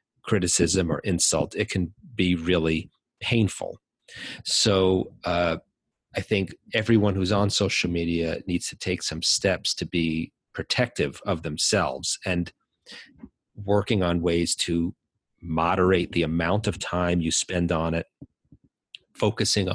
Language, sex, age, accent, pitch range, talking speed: English, male, 40-59, American, 85-105 Hz, 130 wpm